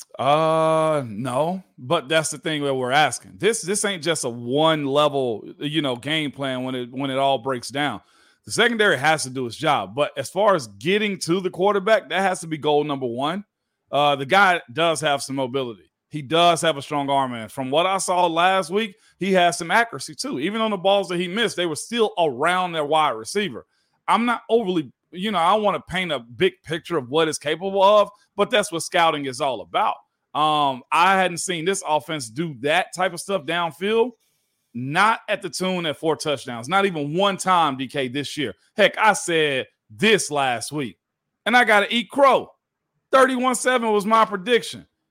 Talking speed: 205 wpm